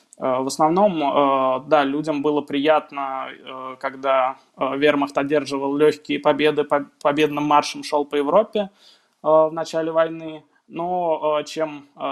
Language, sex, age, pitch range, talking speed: Russian, male, 20-39, 145-160 Hz, 105 wpm